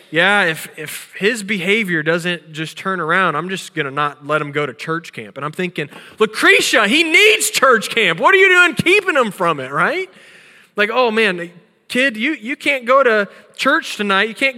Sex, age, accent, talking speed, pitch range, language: male, 20-39, American, 200 wpm, 155-200 Hz, English